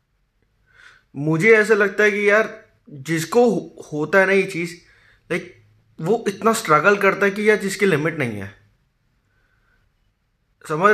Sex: male